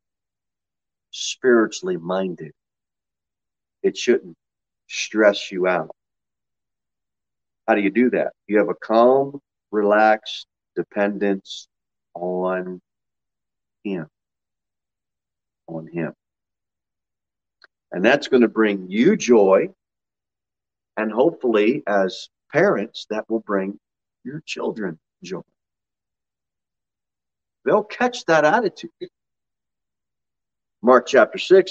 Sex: male